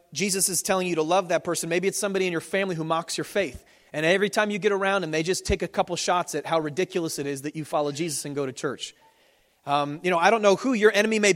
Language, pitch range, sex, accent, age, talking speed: English, 165-210 Hz, male, American, 30-49, 285 wpm